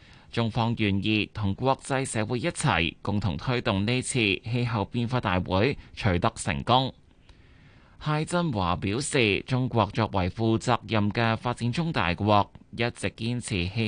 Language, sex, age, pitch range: Chinese, male, 20-39, 95-125 Hz